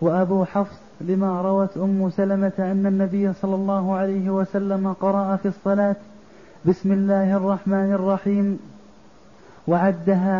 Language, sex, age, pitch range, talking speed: Arabic, male, 30-49, 195-205 Hz, 115 wpm